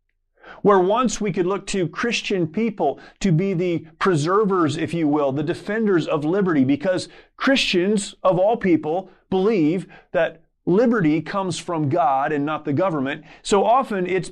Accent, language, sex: American, English, male